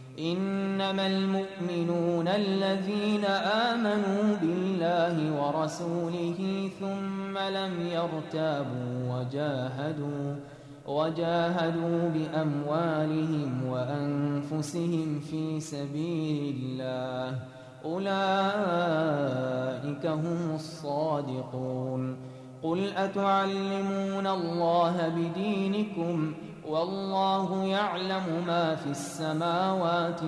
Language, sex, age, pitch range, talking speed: Arabic, male, 20-39, 145-195 Hz, 55 wpm